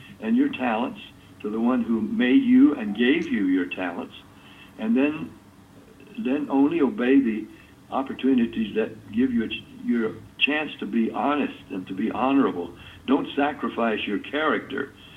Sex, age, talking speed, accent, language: male, 60-79, 155 wpm, American, English